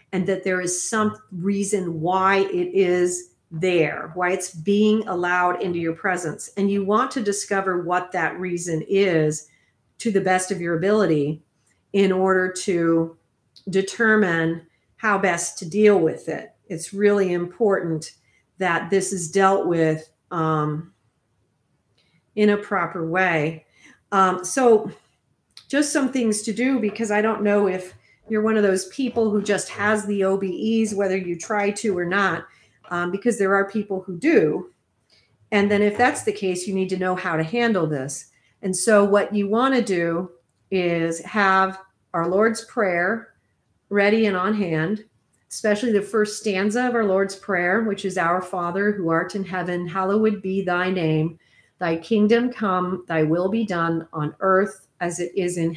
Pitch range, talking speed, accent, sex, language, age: 175-205 Hz, 165 wpm, American, female, English, 40-59